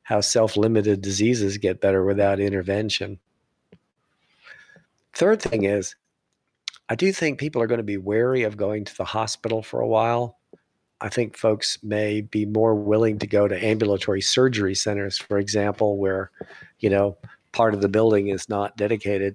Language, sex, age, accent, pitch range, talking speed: English, male, 50-69, American, 100-120 Hz, 160 wpm